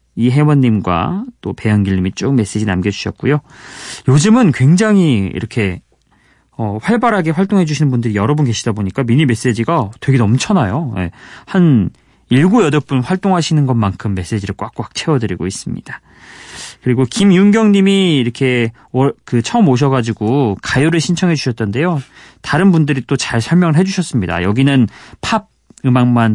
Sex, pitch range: male, 110-160 Hz